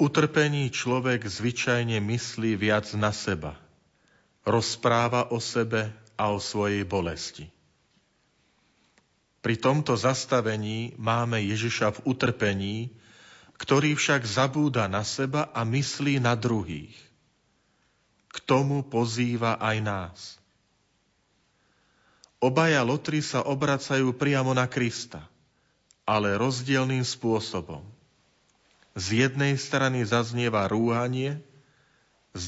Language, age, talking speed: Slovak, 40-59, 95 wpm